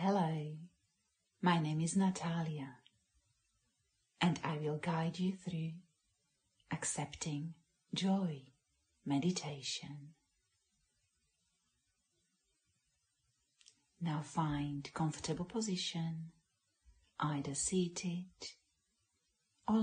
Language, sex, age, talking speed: English, female, 40-59, 65 wpm